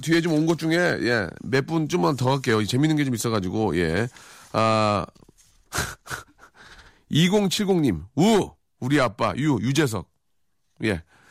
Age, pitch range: 40-59, 115-180 Hz